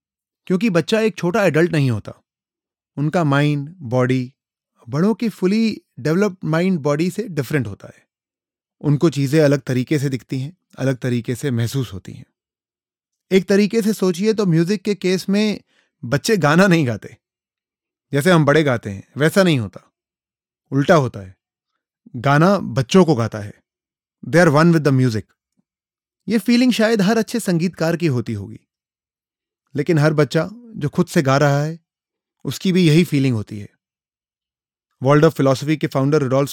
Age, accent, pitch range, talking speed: 30-49, native, 135-175 Hz, 160 wpm